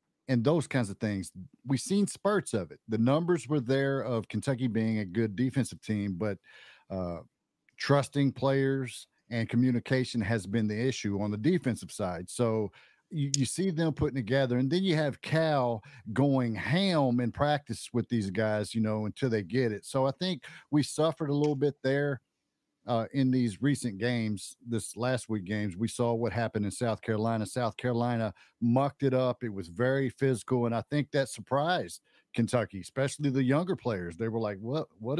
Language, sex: English, male